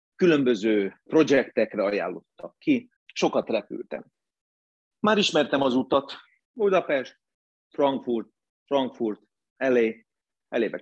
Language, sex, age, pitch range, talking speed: Hungarian, male, 40-59, 110-160 Hz, 85 wpm